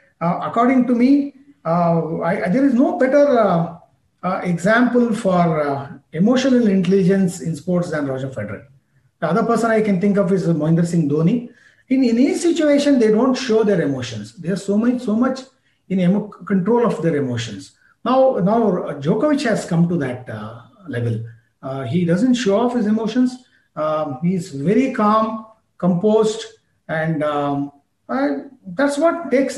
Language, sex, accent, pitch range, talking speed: English, male, Indian, 160-230 Hz, 170 wpm